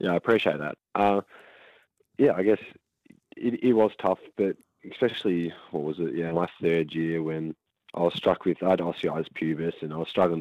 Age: 20-39